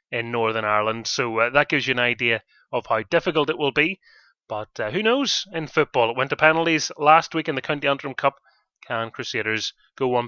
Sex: male